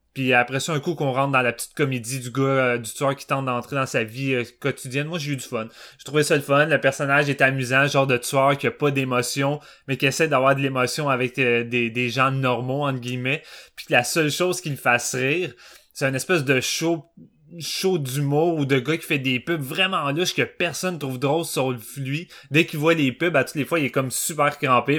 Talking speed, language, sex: 250 wpm, French, male